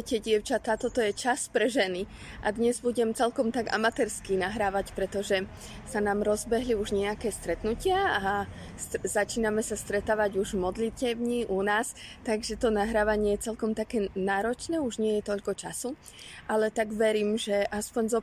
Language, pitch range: Slovak, 200-235 Hz